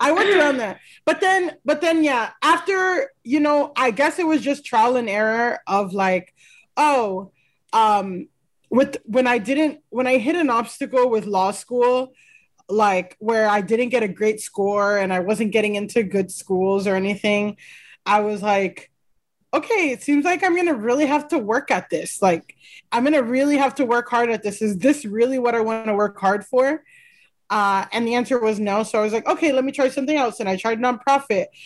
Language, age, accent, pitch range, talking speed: English, 20-39, American, 210-275 Hz, 205 wpm